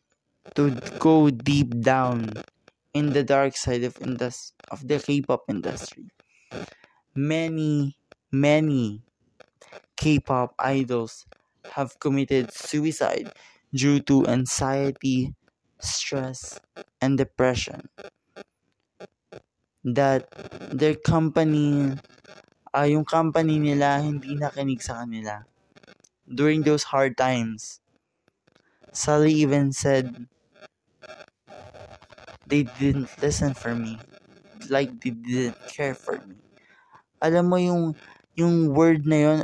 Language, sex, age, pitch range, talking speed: English, male, 20-39, 130-155 Hz, 95 wpm